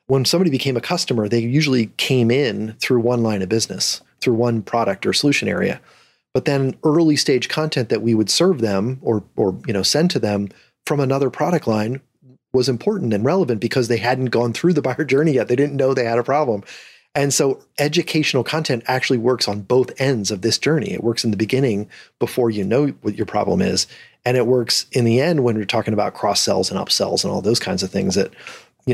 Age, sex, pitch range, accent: 30-49, male, 110-135 Hz, American